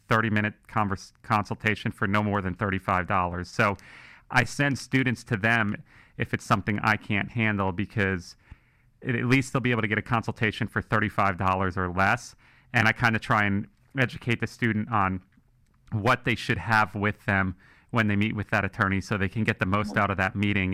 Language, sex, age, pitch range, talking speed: English, male, 30-49, 100-115 Hz, 195 wpm